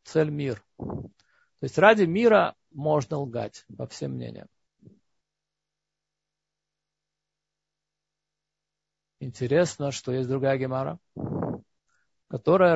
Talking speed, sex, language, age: 80 wpm, male, Russian, 50-69